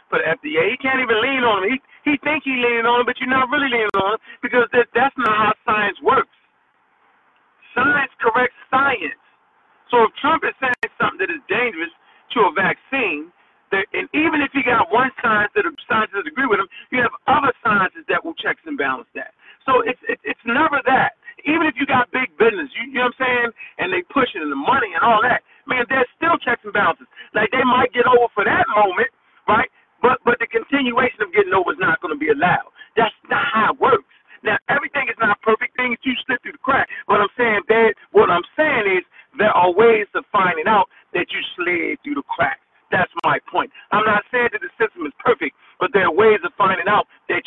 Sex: male